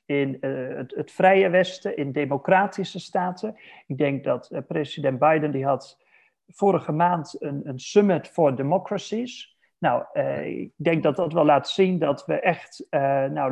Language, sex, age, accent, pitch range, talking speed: Dutch, male, 40-59, Dutch, 145-190 Hz, 170 wpm